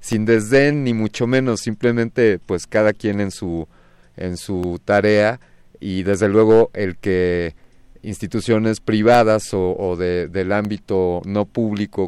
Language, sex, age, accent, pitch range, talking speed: Spanish, male, 40-59, Mexican, 95-115 Hz, 140 wpm